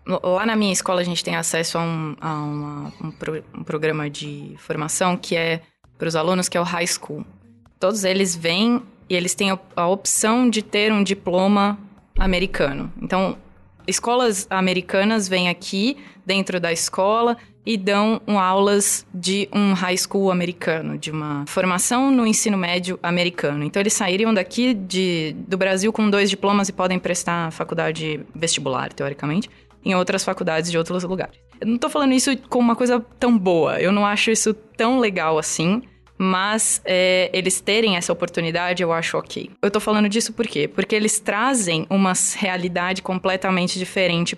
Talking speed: 170 wpm